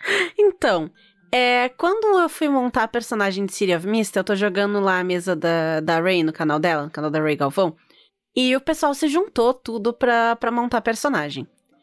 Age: 20-39